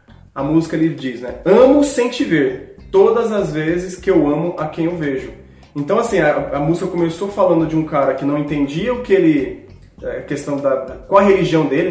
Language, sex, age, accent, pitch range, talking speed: Portuguese, male, 20-39, Brazilian, 145-185 Hz, 210 wpm